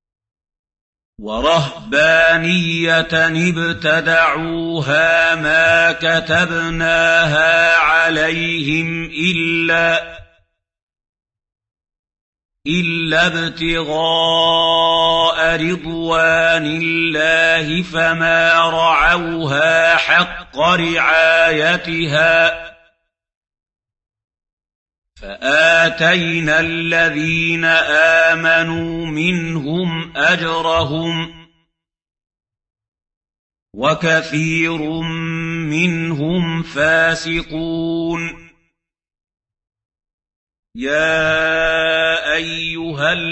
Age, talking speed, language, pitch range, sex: 50-69, 35 wpm, Arabic, 155-165 Hz, male